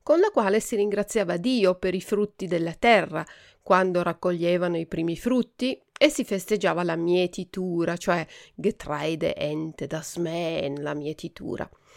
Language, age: Italian, 40-59